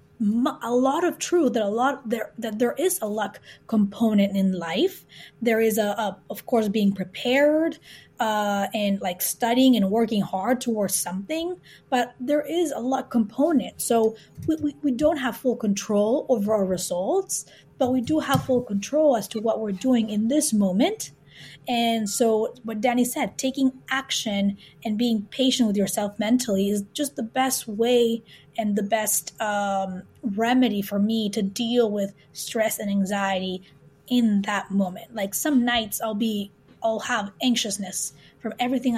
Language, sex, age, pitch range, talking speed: English, female, 20-39, 210-255 Hz, 165 wpm